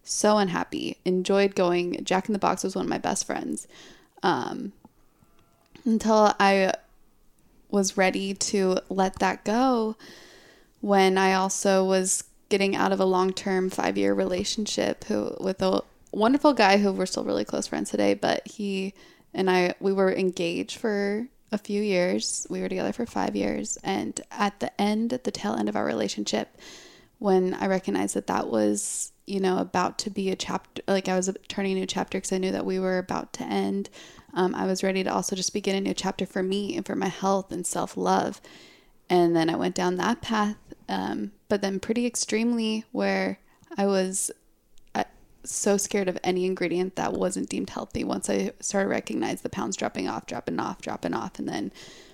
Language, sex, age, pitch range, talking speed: English, female, 20-39, 180-205 Hz, 185 wpm